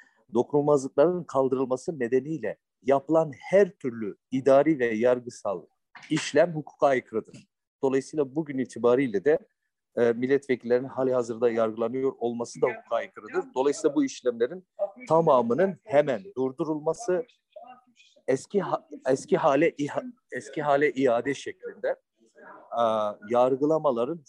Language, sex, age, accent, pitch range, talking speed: Turkish, male, 40-59, native, 130-175 Hz, 95 wpm